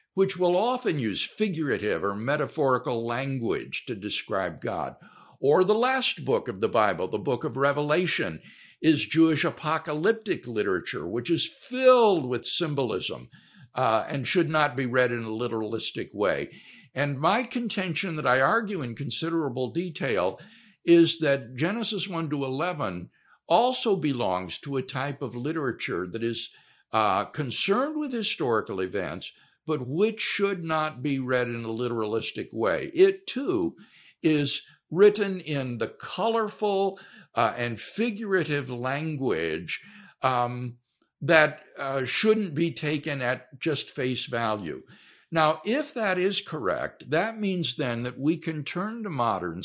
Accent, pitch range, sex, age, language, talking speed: American, 125-195 Hz, male, 60-79, English, 140 wpm